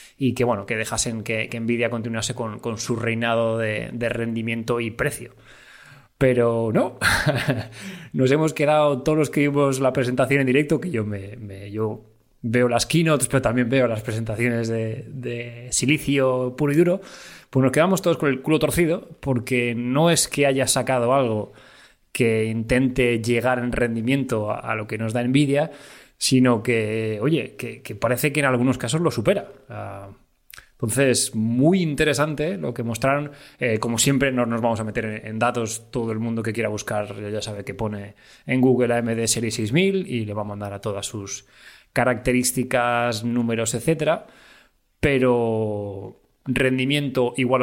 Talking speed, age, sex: 170 wpm, 20-39, male